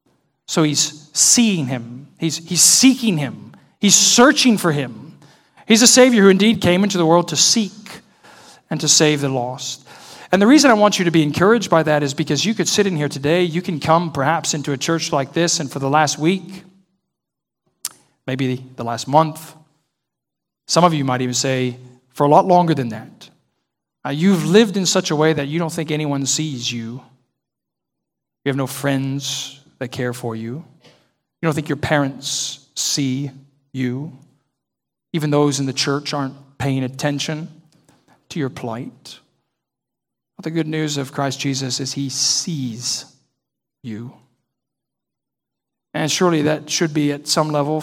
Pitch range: 135-170 Hz